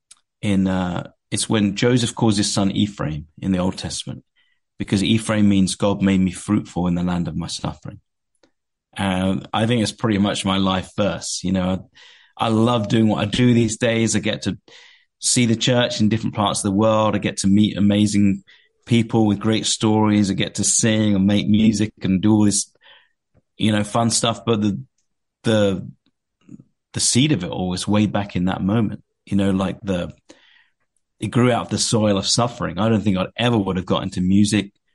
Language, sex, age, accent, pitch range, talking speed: English, male, 30-49, British, 95-110 Hz, 205 wpm